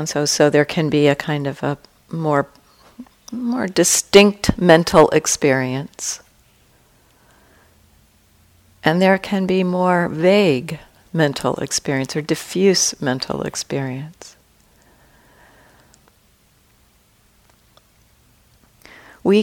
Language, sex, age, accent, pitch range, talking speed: English, female, 50-69, American, 140-175 Hz, 85 wpm